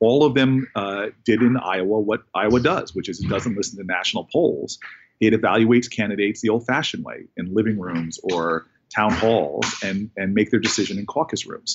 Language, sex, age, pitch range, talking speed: English, male, 40-59, 100-120 Hz, 200 wpm